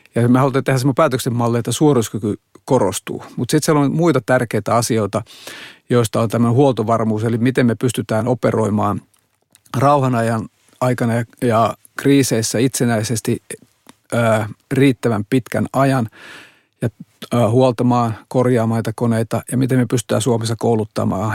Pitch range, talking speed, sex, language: 115-130 Hz, 130 wpm, male, Finnish